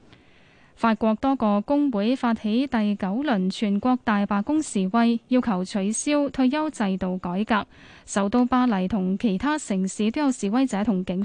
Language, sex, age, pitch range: Chinese, female, 10-29, 205-255 Hz